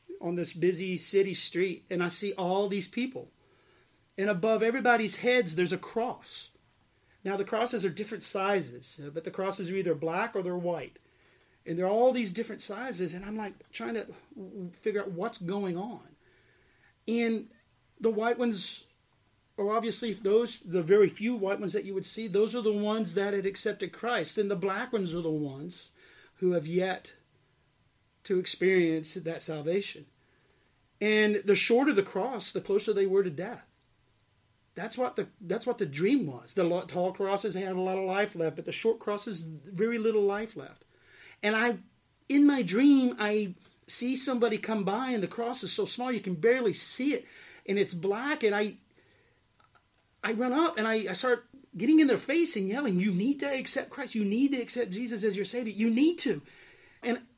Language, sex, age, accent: English, male, 40-59, American